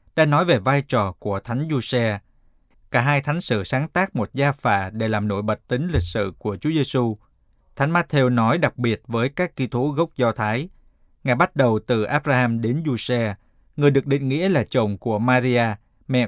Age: 20-39